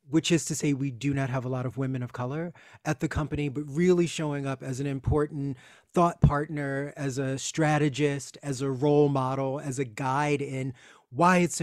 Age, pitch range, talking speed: 30-49, 135-155 Hz, 200 wpm